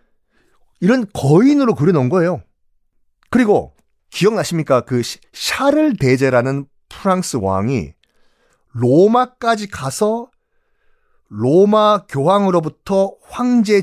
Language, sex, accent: Korean, male, native